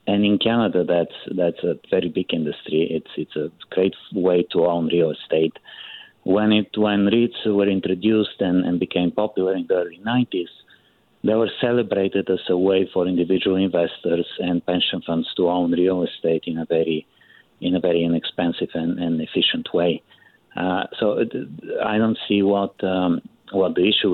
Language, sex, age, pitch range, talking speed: English, male, 50-69, 85-105 Hz, 170 wpm